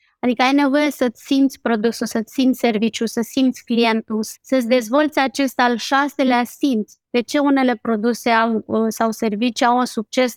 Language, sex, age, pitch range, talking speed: Romanian, female, 20-39, 240-275 Hz, 155 wpm